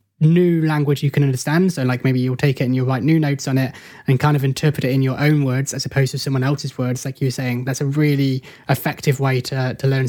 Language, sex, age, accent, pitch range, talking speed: English, male, 20-39, British, 130-150 Hz, 260 wpm